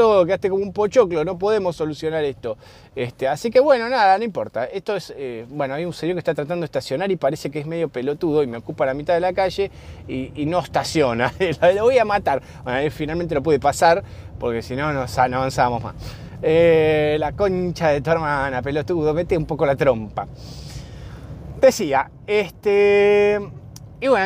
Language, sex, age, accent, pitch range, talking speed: Spanish, male, 20-39, Argentinian, 135-195 Hz, 195 wpm